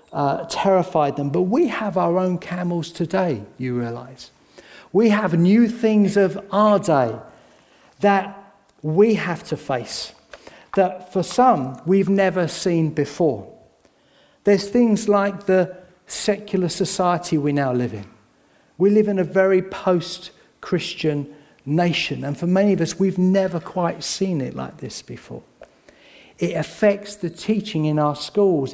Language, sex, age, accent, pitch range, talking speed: English, male, 50-69, British, 160-200 Hz, 140 wpm